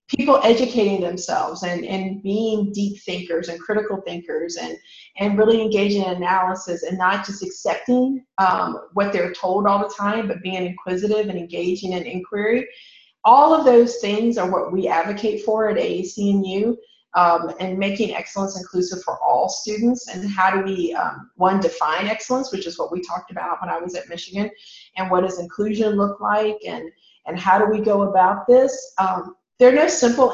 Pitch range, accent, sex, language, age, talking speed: 185-230 Hz, American, female, English, 30-49, 180 wpm